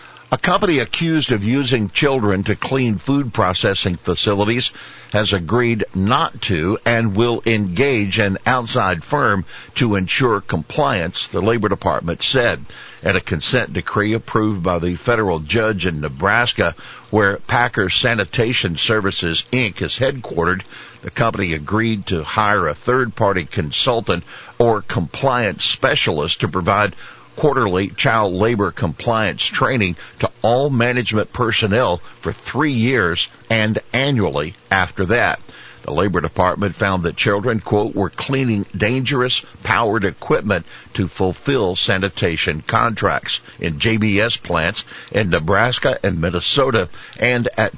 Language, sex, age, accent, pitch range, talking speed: English, male, 50-69, American, 95-120 Hz, 125 wpm